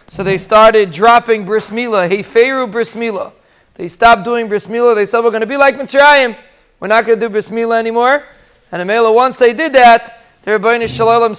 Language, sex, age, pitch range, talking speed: English, male, 30-49, 195-235 Hz, 185 wpm